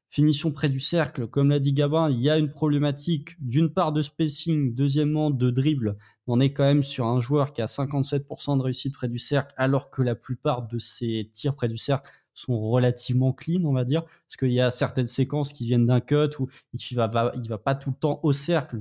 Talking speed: 235 wpm